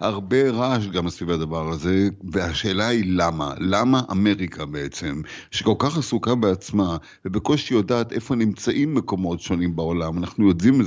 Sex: male